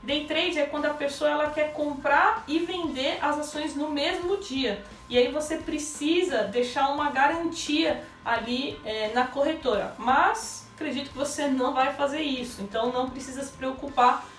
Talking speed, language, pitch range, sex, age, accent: 160 wpm, Portuguese, 260-330 Hz, female, 20-39, Brazilian